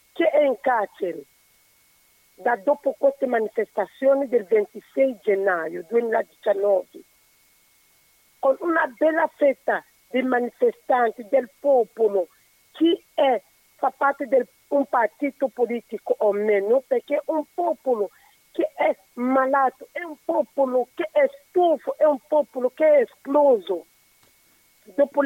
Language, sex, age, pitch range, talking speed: Italian, female, 50-69, 240-305 Hz, 120 wpm